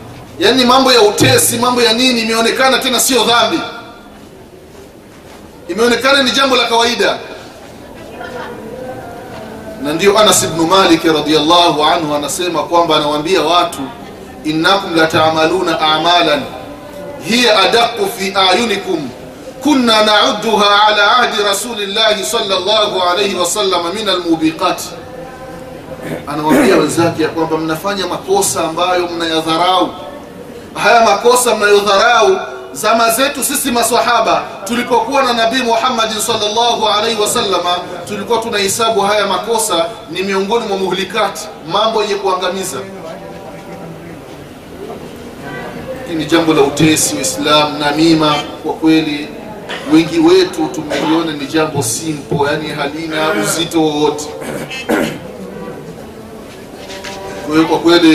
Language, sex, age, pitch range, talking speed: Swahili, male, 30-49, 160-230 Hz, 90 wpm